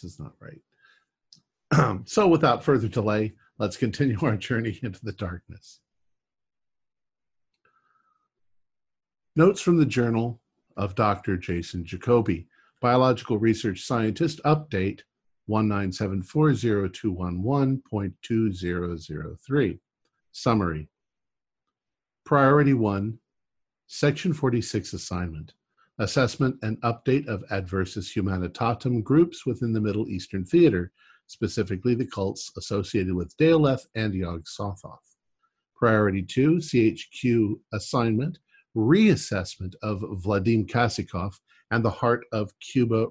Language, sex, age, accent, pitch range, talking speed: English, male, 50-69, American, 100-130 Hz, 95 wpm